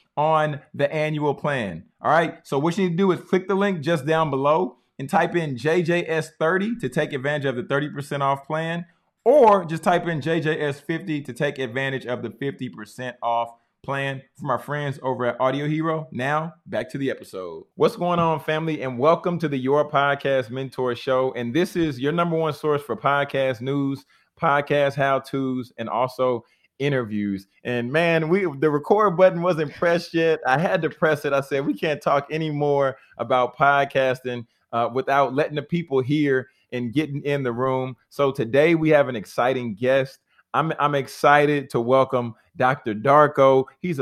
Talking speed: 185 wpm